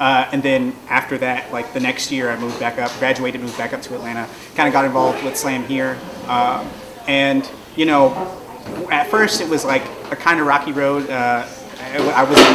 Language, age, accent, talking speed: English, 30-49, American, 205 wpm